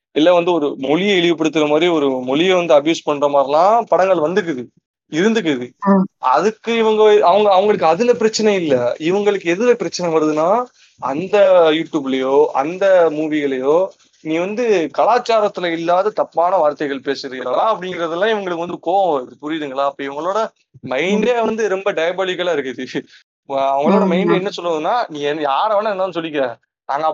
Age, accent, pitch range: 30-49, native, 140-185 Hz